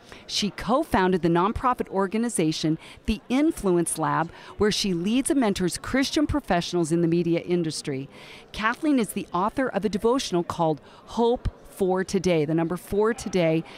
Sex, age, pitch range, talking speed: female, 40-59, 170-235 Hz, 150 wpm